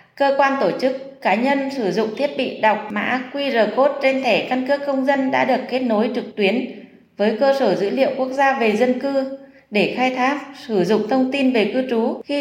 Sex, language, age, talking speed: female, Vietnamese, 20-39, 225 wpm